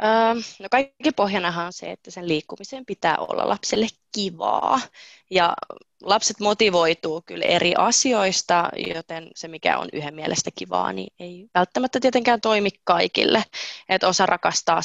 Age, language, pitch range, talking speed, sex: 20-39, Finnish, 160-200 Hz, 135 wpm, female